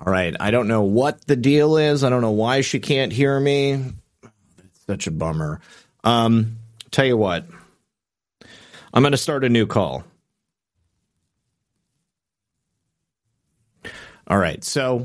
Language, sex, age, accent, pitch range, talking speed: English, male, 30-49, American, 100-125 Hz, 140 wpm